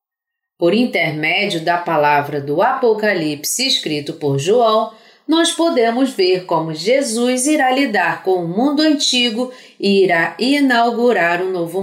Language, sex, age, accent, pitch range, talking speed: Spanish, female, 40-59, Brazilian, 165-260 Hz, 125 wpm